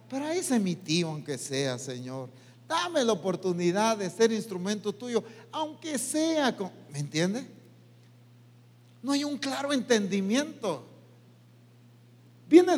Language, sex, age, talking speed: English, male, 50-69, 115 wpm